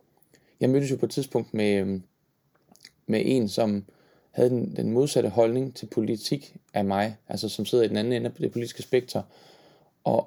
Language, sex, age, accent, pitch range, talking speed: Danish, male, 20-39, native, 105-135 Hz, 180 wpm